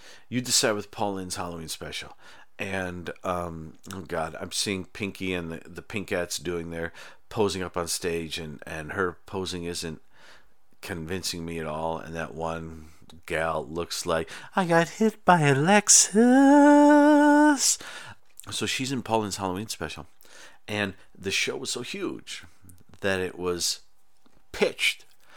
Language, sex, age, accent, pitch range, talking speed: English, male, 50-69, American, 85-145 Hz, 140 wpm